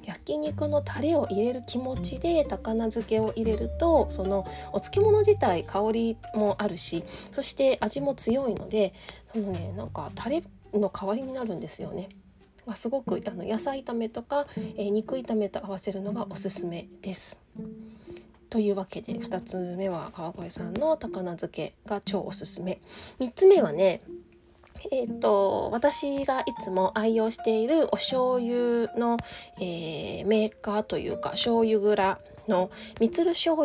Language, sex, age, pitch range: Japanese, female, 20-39, 195-250 Hz